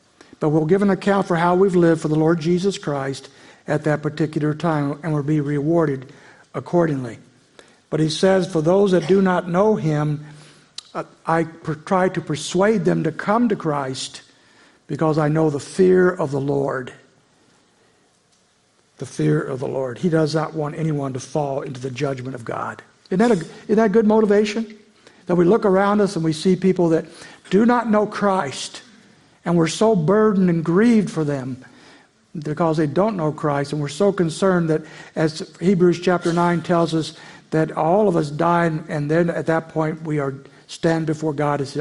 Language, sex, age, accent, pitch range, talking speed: English, male, 60-79, American, 150-185 Hz, 185 wpm